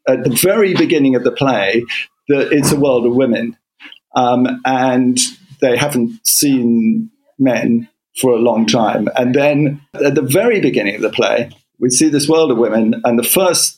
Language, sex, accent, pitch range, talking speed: English, male, British, 120-145 Hz, 180 wpm